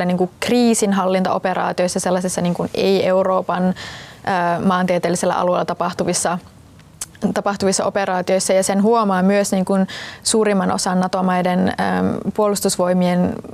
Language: Finnish